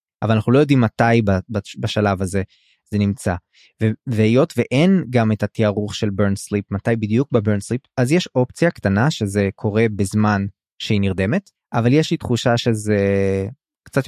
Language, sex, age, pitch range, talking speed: Hebrew, male, 20-39, 105-125 Hz, 155 wpm